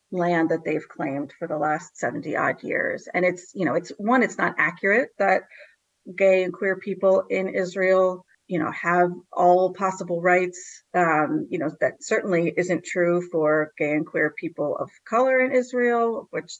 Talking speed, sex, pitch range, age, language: 175 wpm, female, 160-190 Hz, 30-49, English